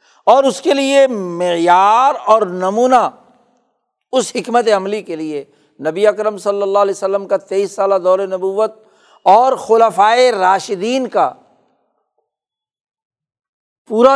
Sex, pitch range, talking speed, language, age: male, 200-270 Hz, 120 wpm, Urdu, 60-79